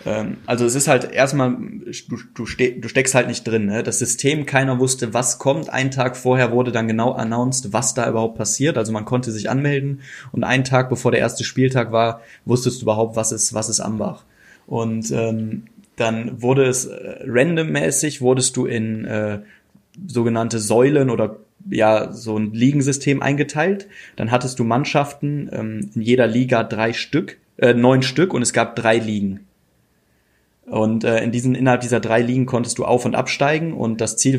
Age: 20-39